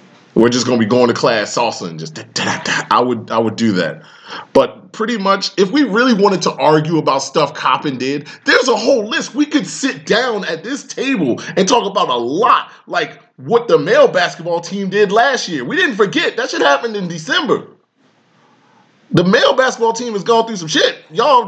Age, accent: 20-39, American